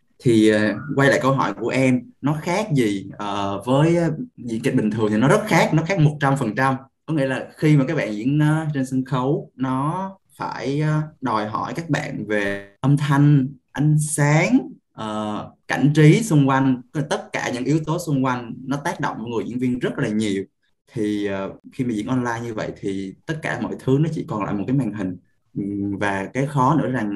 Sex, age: male, 20-39